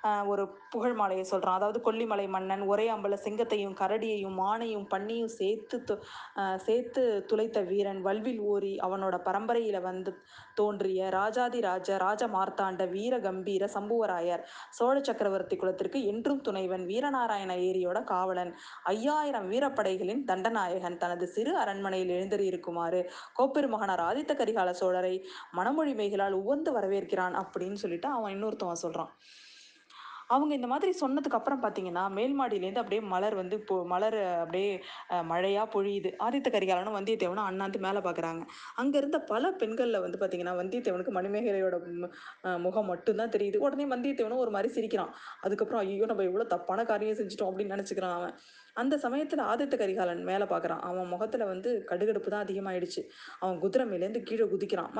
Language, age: Tamil, 20-39